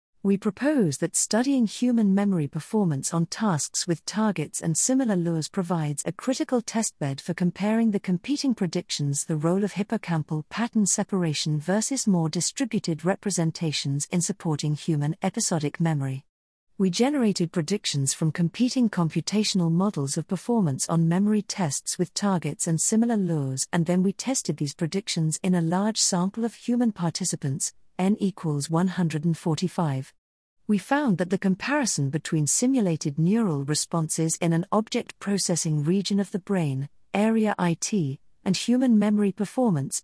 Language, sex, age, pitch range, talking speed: English, female, 50-69, 160-210 Hz, 140 wpm